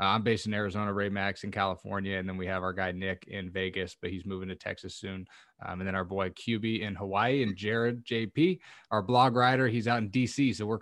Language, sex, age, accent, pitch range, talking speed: English, male, 20-39, American, 100-115 Hz, 240 wpm